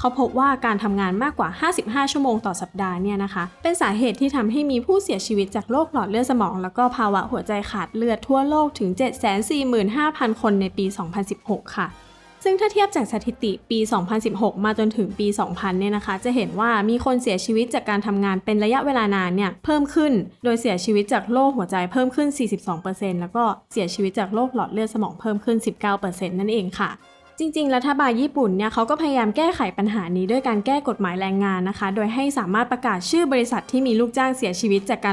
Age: 20-39